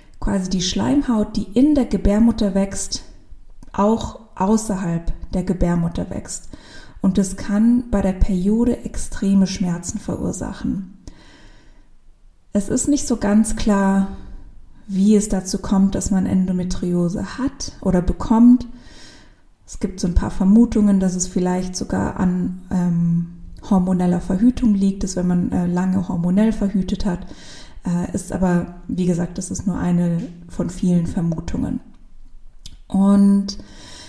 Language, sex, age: German, female, 20-39